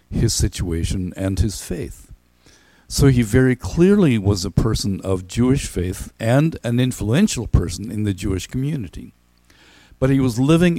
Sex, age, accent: male, 60-79, American